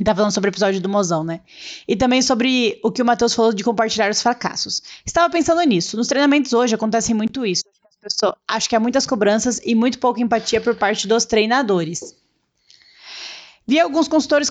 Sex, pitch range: female, 200-240 Hz